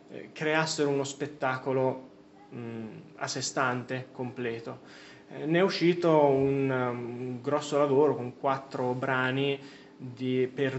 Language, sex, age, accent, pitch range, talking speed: Italian, male, 20-39, native, 120-140 Hz, 130 wpm